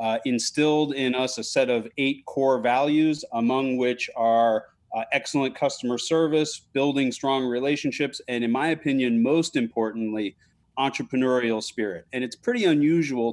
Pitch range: 120-150 Hz